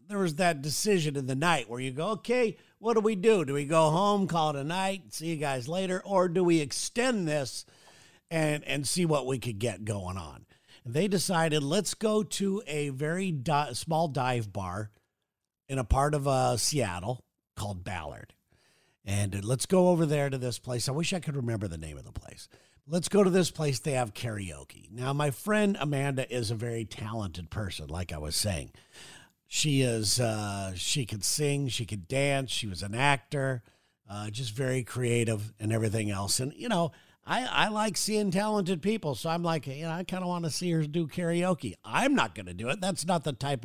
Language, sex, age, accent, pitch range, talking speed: English, male, 50-69, American, 120-185 Hz, 210 wpm